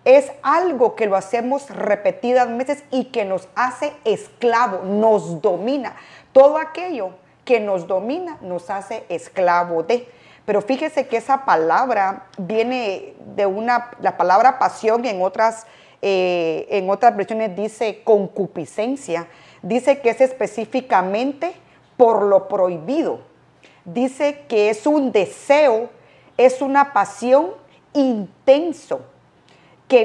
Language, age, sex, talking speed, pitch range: Spanish, 40-59, female, 120 wpm, 195-270 Hz